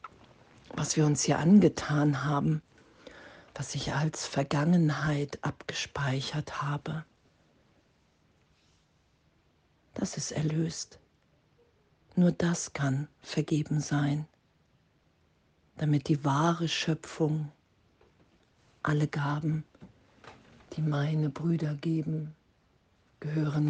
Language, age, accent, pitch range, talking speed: German, 50-69, German, 145-155 Hz, 80 wpm